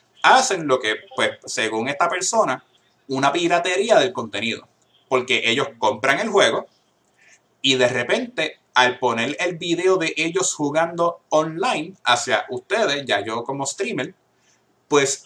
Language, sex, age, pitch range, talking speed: Spanish, male, 30-49, 135-200 Hz, 135 wpm